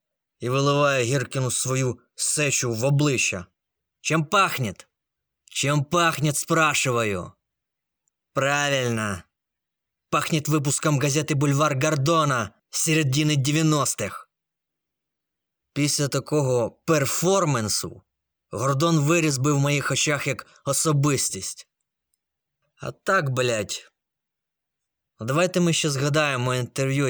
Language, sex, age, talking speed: Ukrainian, male, 20-39, 85 wpm